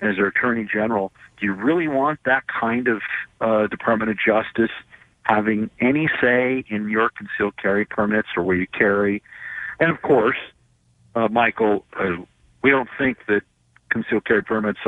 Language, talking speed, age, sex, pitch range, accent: English, 160 wpm, 50-69, male, 100-120 Hz, American